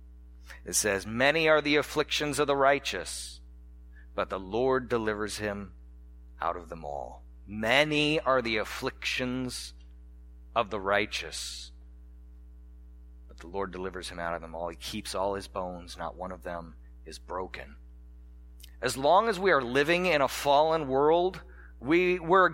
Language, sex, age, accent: English, male, 40-59, American